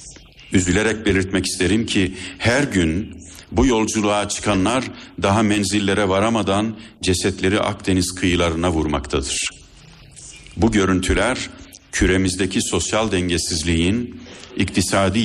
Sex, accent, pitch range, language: male, native, 90-110 Hz, Turkish